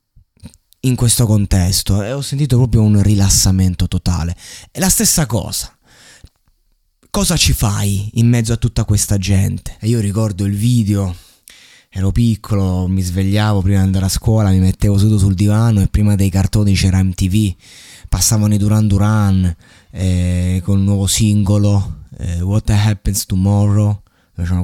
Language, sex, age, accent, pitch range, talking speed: Italian, male, 20-39, native, 95-115 Hz, 150 wpm